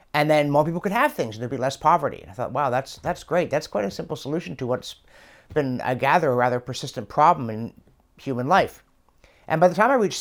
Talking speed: 245 wpm